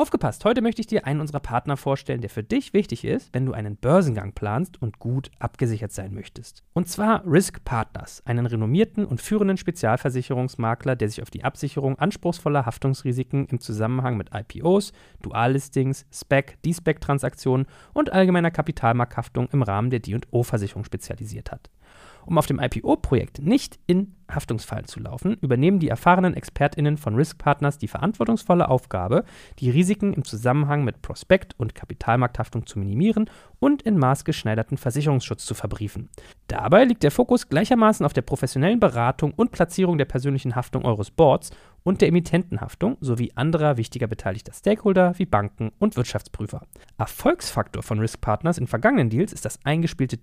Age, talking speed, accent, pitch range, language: 40-59, 160 wpm, German, 115-170 Hz, German